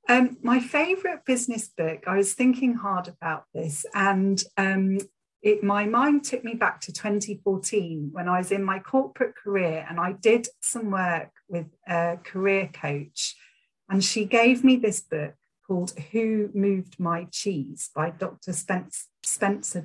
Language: English